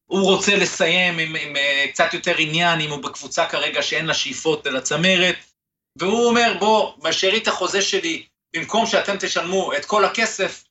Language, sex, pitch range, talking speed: Hebrew, male, 135-200 Hz, 180 wpm